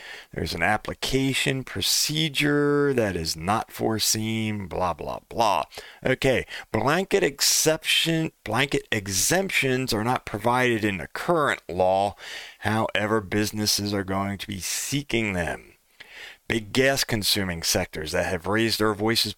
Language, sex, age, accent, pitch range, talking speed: English, male, 40-59, American, 100-125 Hz, 120 wpm